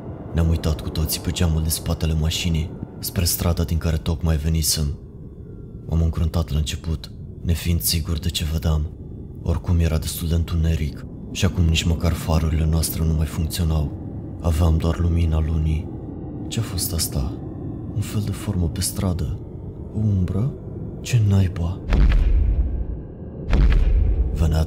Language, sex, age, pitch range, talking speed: Romanian, male, 20-39, 80-90 Hz, 135 wpm